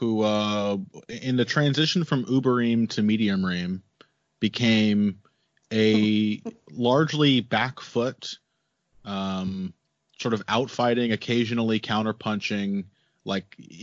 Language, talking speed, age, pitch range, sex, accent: English, 105 wpm, 30-49, 100-130 Hz, male, American